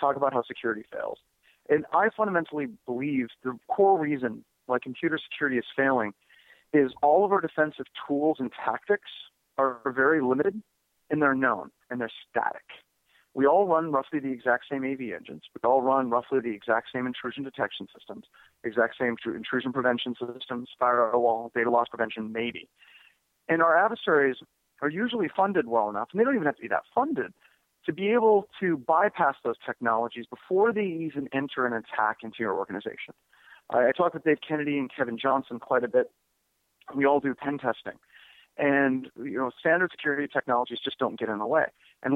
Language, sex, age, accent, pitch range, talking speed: English, male, 40-59, American, 120-150 Hz, 180 wpm